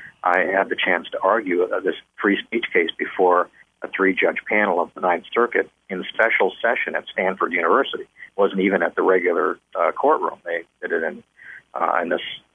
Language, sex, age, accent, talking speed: English, male, 50-69, American, 195 wpm